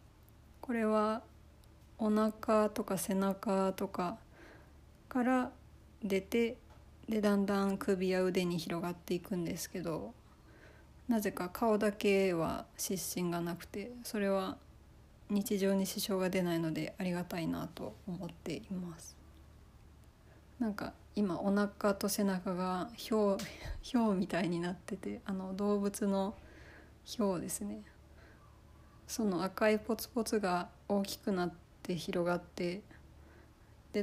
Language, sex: Japanese, female